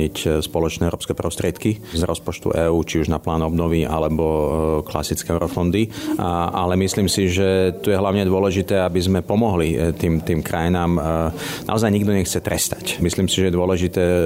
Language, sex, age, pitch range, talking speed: Slovak, male, 40-59, 85-95 Hz, 165 wpm